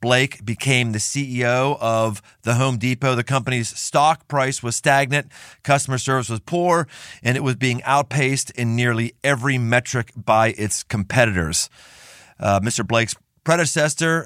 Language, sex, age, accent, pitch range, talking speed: English, male, 40-59, American, 110-140 Hz, 145 wpm